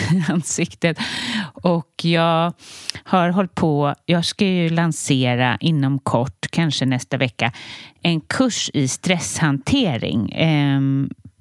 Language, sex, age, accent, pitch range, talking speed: Swedish, female, 30-49, native, 130-175 Hz, 105 wpm